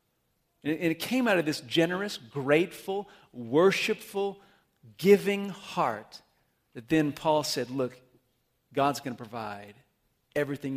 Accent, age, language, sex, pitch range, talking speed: American, 40-59, English, male, 125-160 Hz, 115 wpm